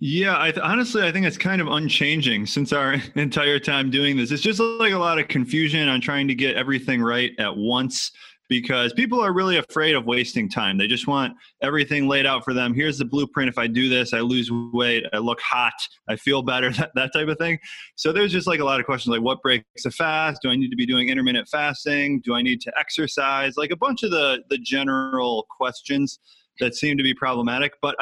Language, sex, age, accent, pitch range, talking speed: English, male, 20-39, American, 125-155 Hz, 230 wpm